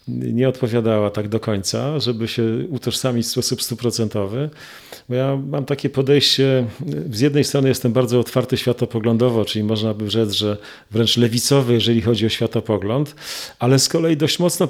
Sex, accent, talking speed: male, native, 160 wpm